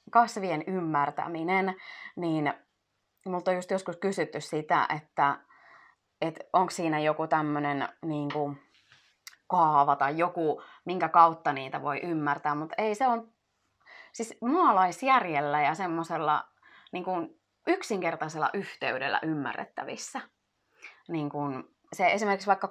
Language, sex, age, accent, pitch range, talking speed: Finnish, female, 30-49, native, 150-195 Hz, 110 wpm